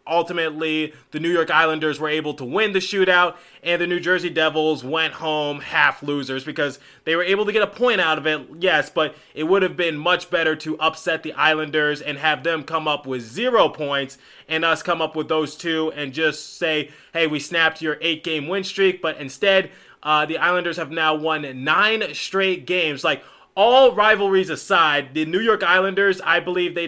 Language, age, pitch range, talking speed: English, 20-39, 150-185 Hz, 205 wpm